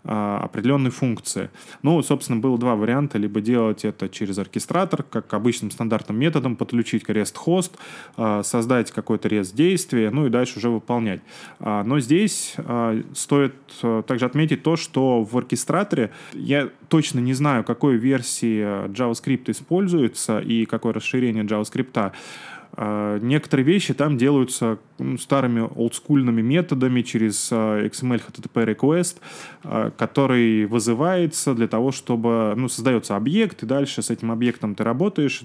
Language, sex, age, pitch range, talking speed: Russian, male, 20-39, 110-140 Hz, 125 wpm